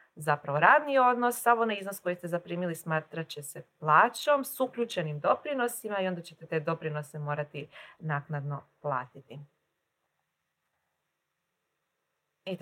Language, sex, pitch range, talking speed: Croatian, female, 165-210 Hz, 115 wpm